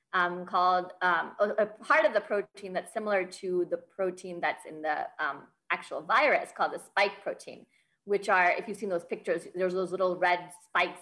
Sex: female